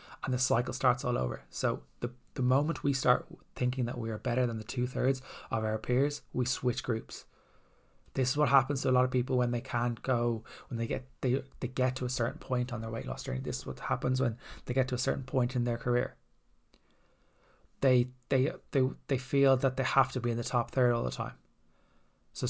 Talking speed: 230 wpm